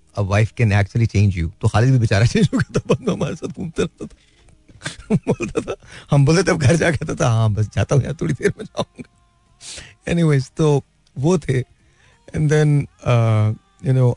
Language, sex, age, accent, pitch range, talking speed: Hindi, male, 40-59, native, 100-135 Hz, 125 wpm